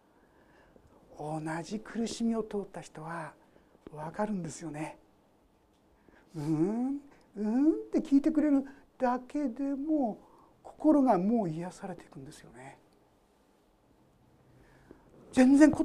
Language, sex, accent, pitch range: Japanese, male, native, 210-330 Hz